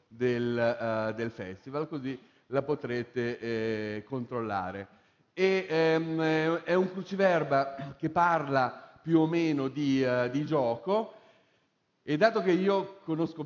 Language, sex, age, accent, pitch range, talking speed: Italian, male, 40-59, native, 125-160 Hz, 125 wpm